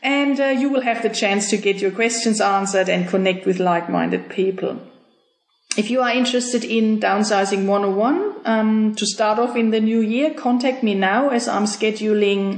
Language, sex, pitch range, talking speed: English, female, 195-235 Hz, 180 wpm